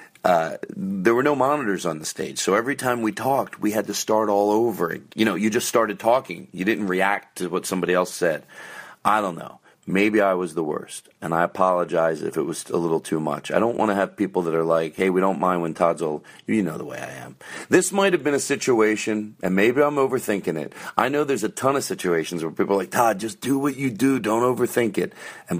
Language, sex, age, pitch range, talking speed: English, male, 40-59, 85-110 Hz, 245 wpm